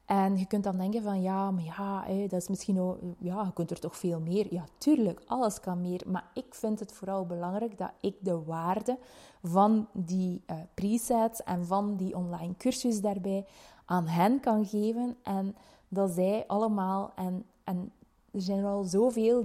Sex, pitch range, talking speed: female, 190-220 Hz, 185 wpm